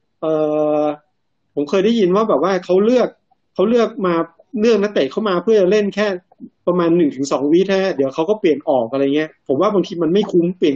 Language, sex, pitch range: Thai, male, 165-210 Hz